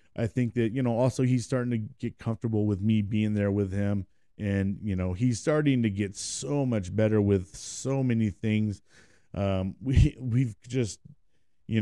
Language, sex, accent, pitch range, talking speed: English, male, American, 100-130 Hz, 185 wpm